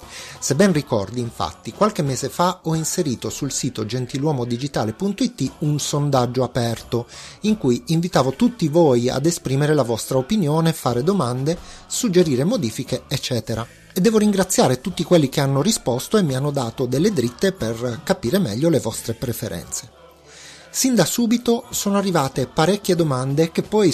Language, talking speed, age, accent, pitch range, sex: Italian, 150 wpm, 30-49, native, 125-175 Hz, male